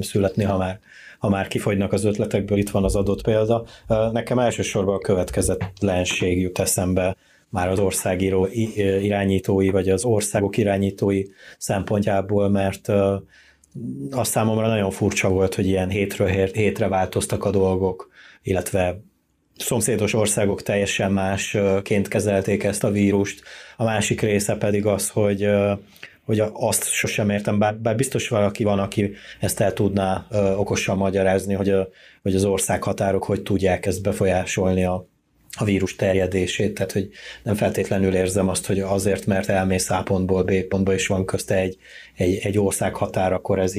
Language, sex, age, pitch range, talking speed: Hungarian, male, 30-49, 95-105 Hz, 145 wpm